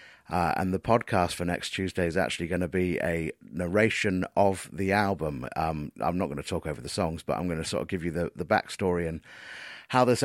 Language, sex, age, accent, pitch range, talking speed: English, male, 30-49, British, 90-115 Hz, 235 wpm